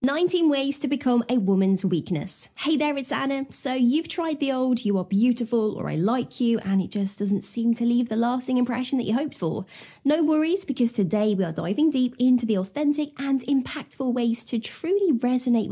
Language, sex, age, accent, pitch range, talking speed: English, female, 20-39, British, 210-280 Hz, 205 wpm